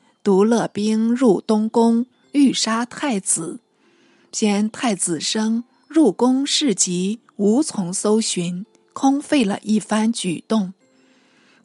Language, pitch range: Chinese, 205-255 Hz